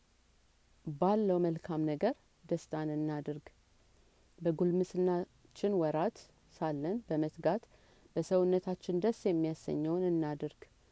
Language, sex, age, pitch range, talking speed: Amharic, female, 30-49, 155-190 Hz, 70 wpm